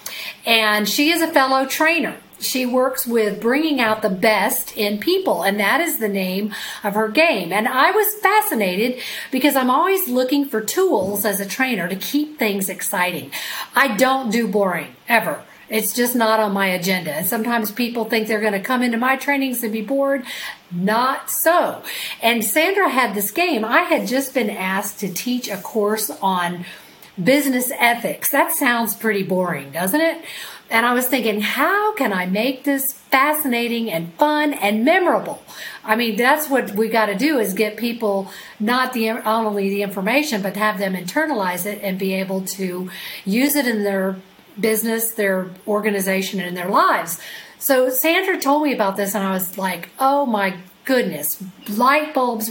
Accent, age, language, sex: American, 40-59, English, female